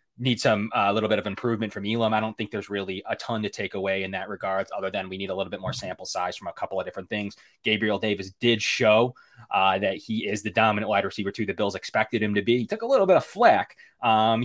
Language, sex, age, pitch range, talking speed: English, male, 20-39, 100-115 Hz, 270 wpm